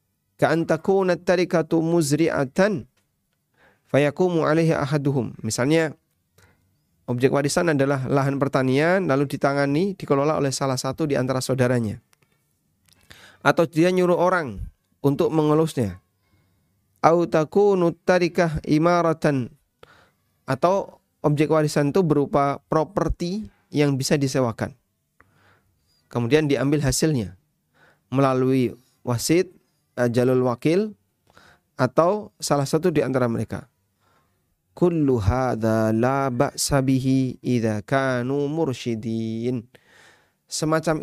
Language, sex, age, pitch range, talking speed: Indonesian, male, 30-49, 115-155 Hz, 75 wpm